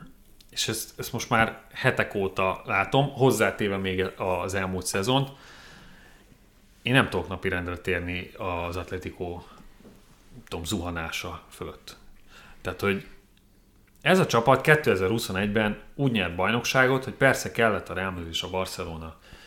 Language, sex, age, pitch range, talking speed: Hungarian, male, 30-49, 95-120 Hz, 125 wpm